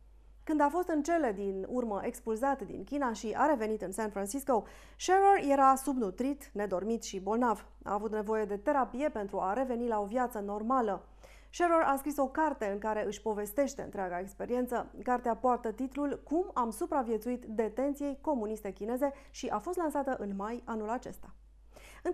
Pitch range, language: 210-280 Hz, Romanian